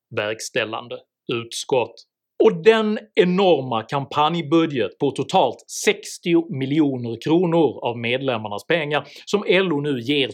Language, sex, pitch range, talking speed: Swedish, male, 150-230 Hz, 105 wpm